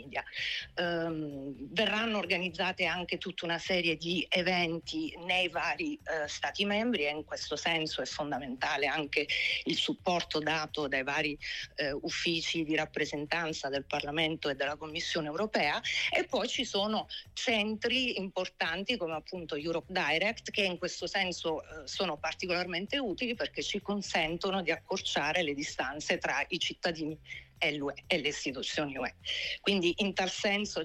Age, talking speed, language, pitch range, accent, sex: 50-69, 140 wpm, Italian, 165-205 Hz, native, female